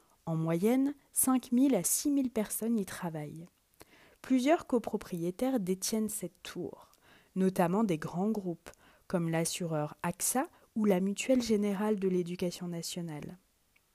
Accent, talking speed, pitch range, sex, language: French, 125 wpm, 185-245 Hz, female, French